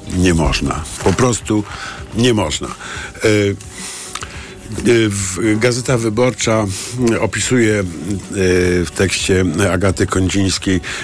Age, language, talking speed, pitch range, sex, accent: 50-69, Polish, 70 wpm, 85-105 Hz, male, native